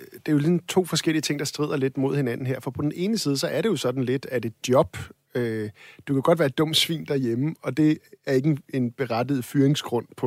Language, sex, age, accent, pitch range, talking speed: Danish, male, 50-69, native, 120-155 Hz, 265 wpm